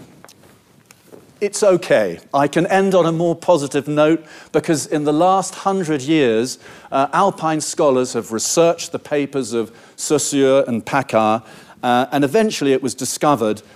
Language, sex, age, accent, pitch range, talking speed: English, male, 40-59, British, 120-165 Hz, 145 wpm